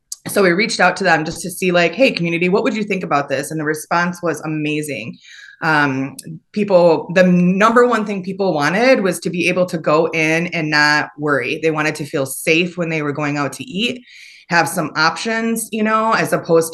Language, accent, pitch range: English, American, 165-210 Hz